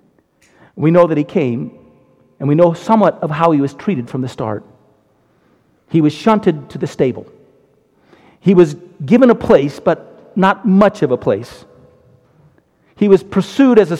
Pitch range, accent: 125-175 Hz, American